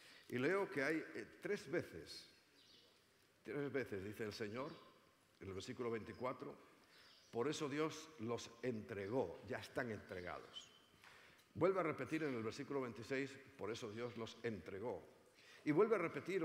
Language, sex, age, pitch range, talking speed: Spanish, male, 50-69, 115-145 Hz, 140 wpm